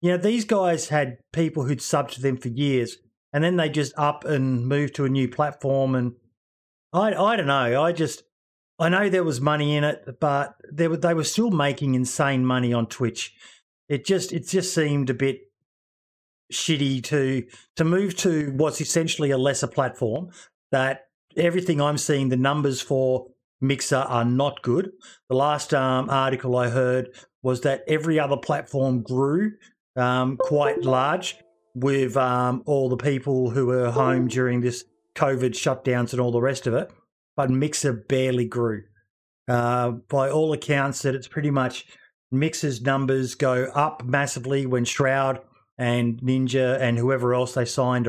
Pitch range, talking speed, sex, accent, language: 125-145 Hz, 170 wpm, male, Australian, English